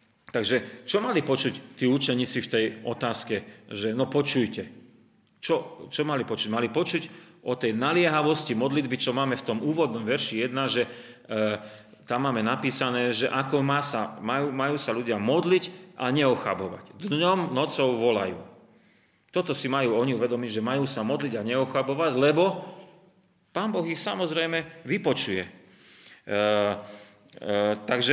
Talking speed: 145 wpm